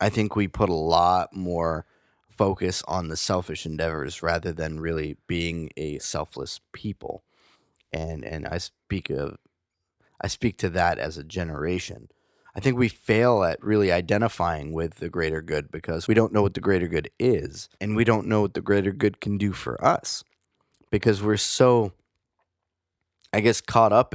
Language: English